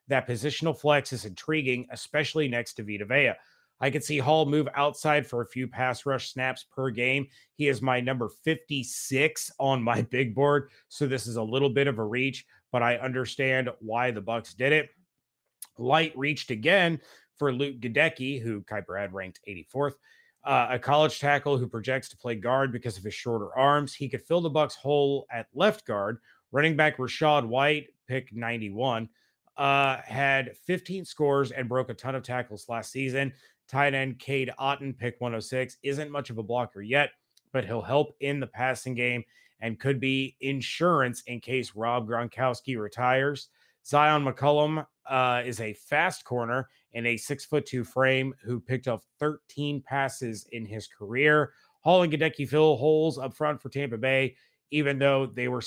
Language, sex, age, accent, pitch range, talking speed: English, male, 30-49, American, 120-145 Hz, 175 wpm